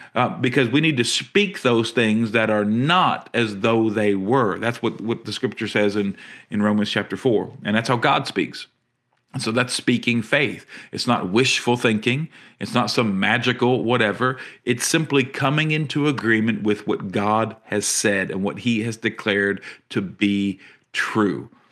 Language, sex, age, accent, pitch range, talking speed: English, male, 50-69, American, 105-135 Hz, 170 wpm